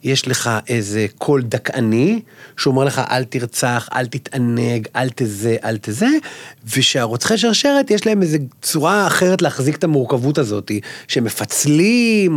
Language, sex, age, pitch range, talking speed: Hebrew, male, 30-49, 135-190 Hz, 130 wpm